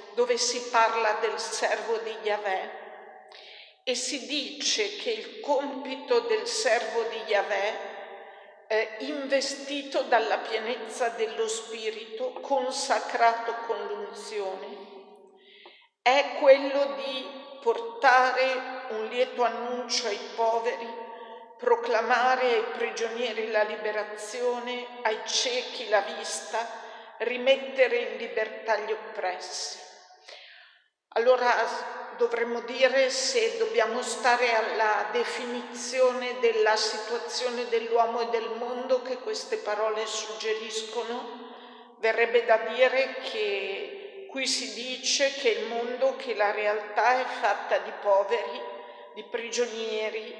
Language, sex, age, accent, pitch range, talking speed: Italian, female, 50-69, native, 220-270 Hz, 100 wpm